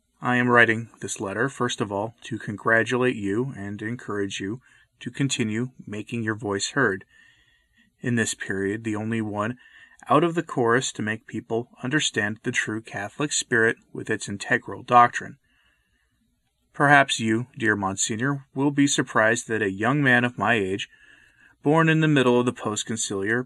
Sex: male